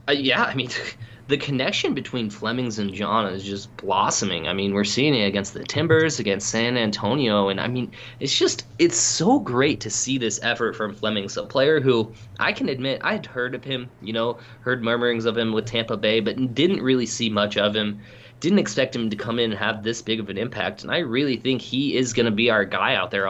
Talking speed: 230 wpm